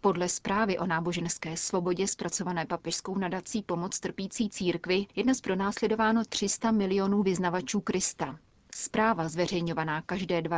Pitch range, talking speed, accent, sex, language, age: 170-200 Hz, 125 wpm, native, female, Czech, 30-49